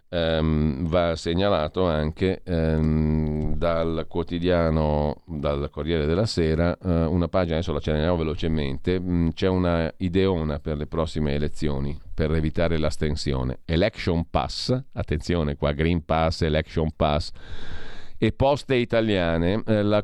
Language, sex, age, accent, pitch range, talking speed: Italian, male, 50-69, native, 80-105 Hz, 125 wpm